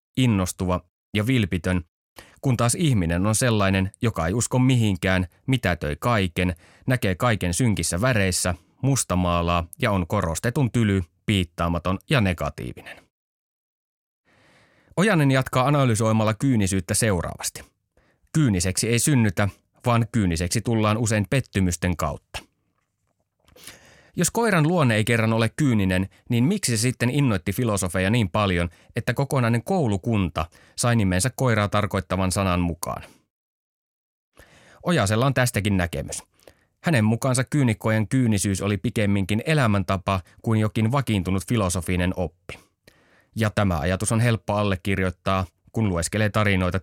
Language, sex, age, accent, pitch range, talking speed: Finnish, male, 30-49, native, 90-120 Hz, 115 wpm